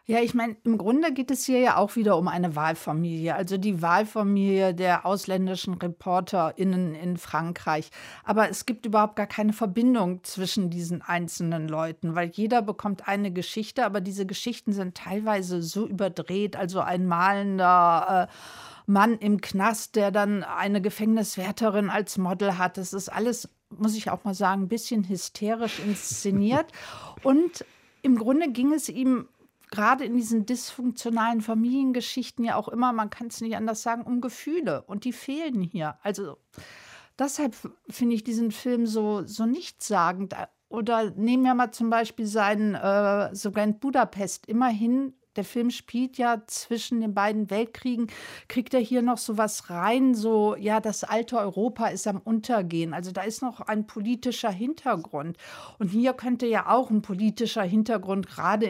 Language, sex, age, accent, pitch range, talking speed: German, female, 50-69, German, 190-235 Hz, 160 wpm